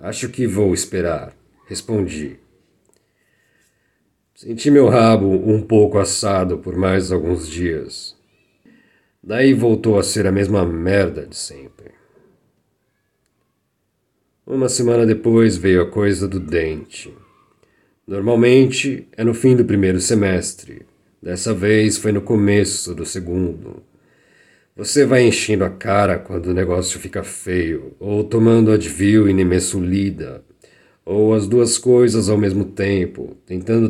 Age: 50-69